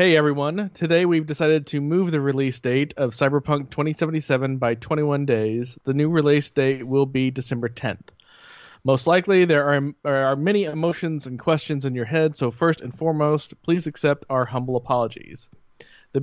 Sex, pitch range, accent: male, 130-155 Hz, American